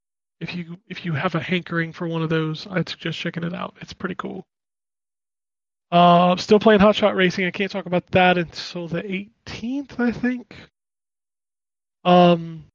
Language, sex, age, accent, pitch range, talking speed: English, male, 20-39, American, 170-200 Hz, 170 wpm